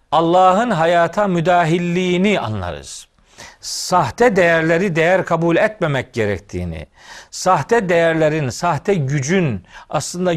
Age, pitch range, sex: 40-59, 135-185 Hz, male